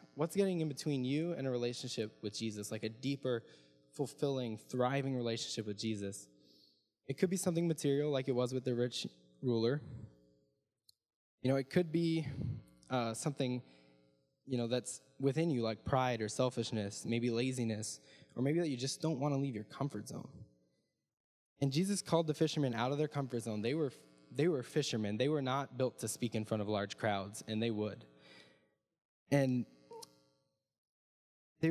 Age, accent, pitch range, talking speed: 10-29, American, 110-140 Hz, 170 wpm